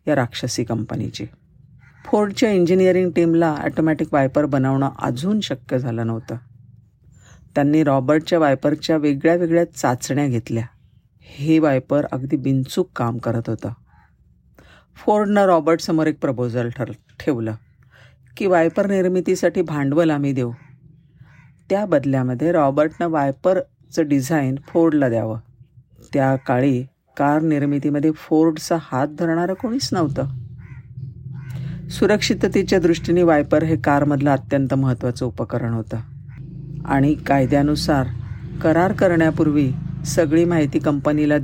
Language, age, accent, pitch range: Marathi, 50-69, native, 130-160 Hz